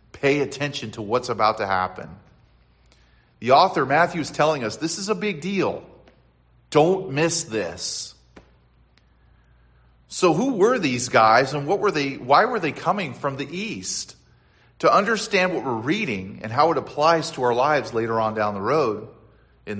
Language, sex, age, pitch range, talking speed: English, male, 40-59, 105-145 Hz, 165 wpm